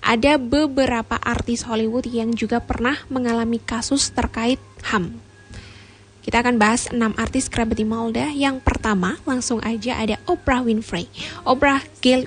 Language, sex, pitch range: Indonesian, female, 225-260 Hz